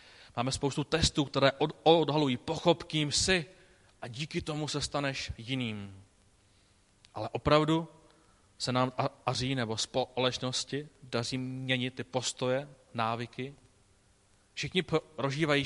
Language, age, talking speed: Czech, 30-49, 105 wpm